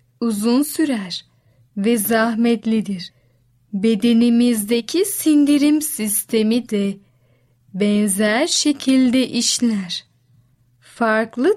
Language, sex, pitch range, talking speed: Turkish, female, 200-255 Hz, 60 wpm